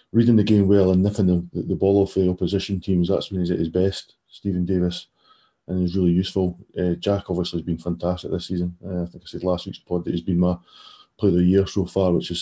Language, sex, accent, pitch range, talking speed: English, male, British, 90-95 Hz, 250 wpm